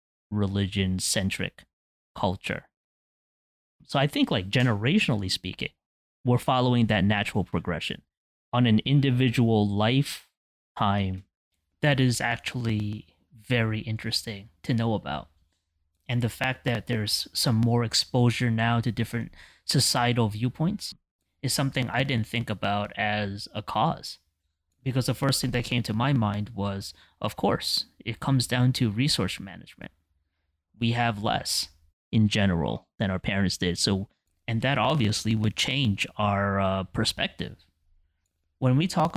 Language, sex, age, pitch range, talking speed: English, male, 20-39, 100-120 Hz, 135 wpm